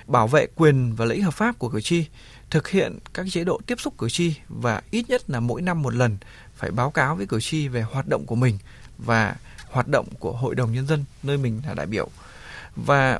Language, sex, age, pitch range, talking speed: Vietnamese, male, 20-39, 120-170 Hz, 235 wpm